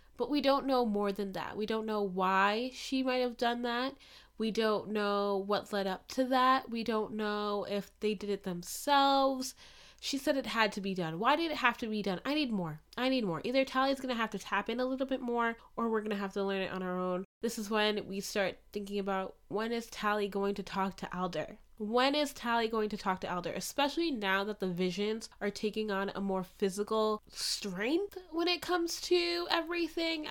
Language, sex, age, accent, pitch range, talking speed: English, female, 10-29, American, 200-255 Hz, 230 wpm